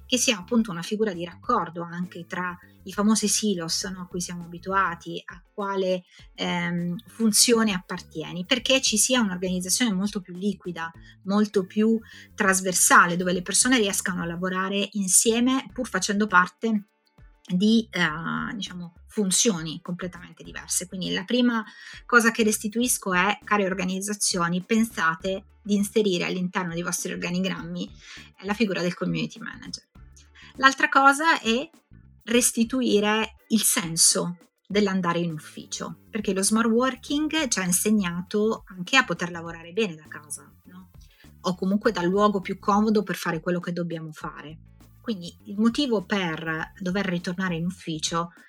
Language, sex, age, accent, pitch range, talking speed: Italian, female, 30-49, native, 175-215 Hz, 135 wpm